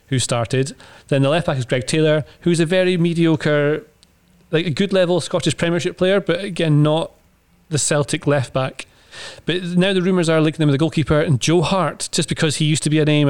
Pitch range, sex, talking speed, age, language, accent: 130-165 Hz, male, 215 wpm, 30-49, English, British